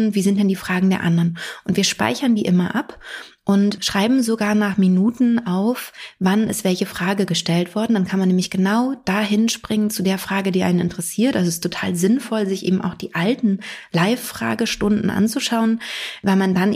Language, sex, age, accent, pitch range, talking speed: German, female, 30-49, German, 180-205 Hz, 190 wpm